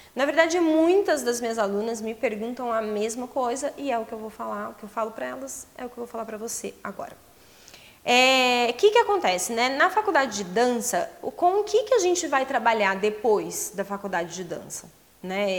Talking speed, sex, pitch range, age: 215 wpm, female, 200-260 Hz, 20-39